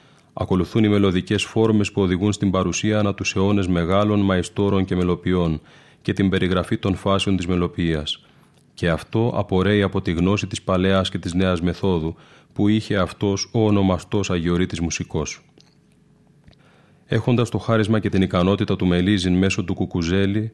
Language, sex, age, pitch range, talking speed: Greek, male, 30-49, 90-105 Hz, 145 wpm